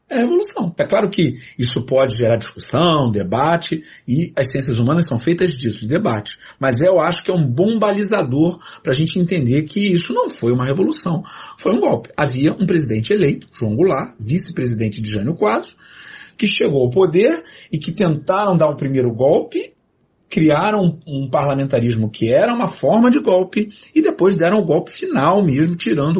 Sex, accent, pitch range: male, Brazilian, 135-205 Hz